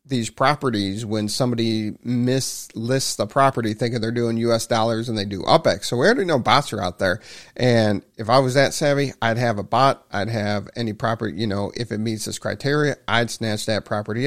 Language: English